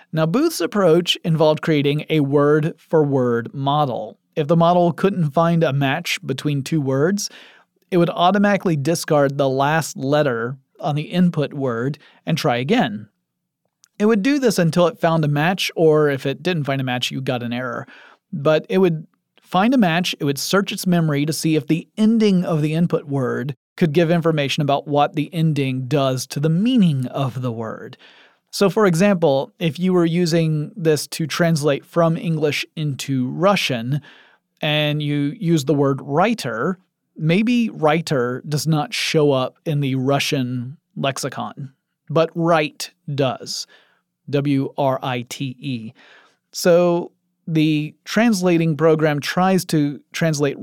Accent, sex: American, male